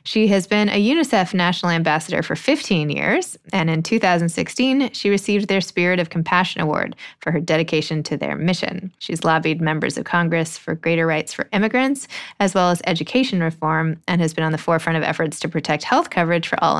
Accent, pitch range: American, 165-210 Hz